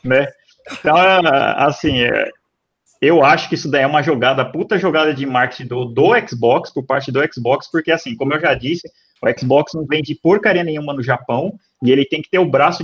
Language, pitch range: Portuguese, 130-165 Hz